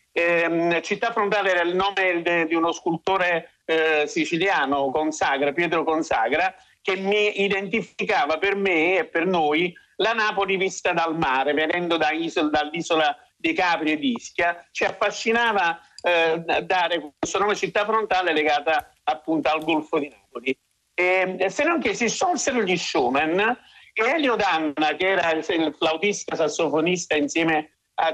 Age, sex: 50-69, male